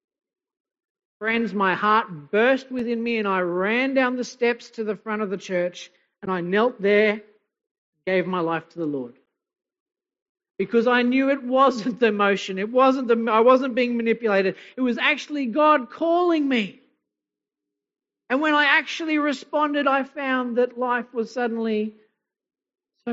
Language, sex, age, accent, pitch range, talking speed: English, male, 40-59, Australian, 180-235 Hz, 155 wpm